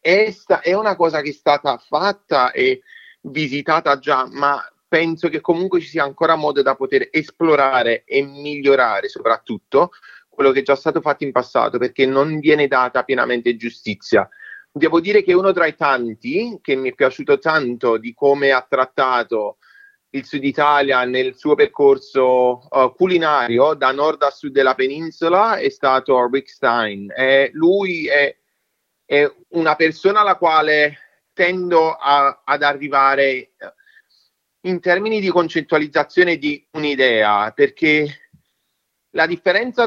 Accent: native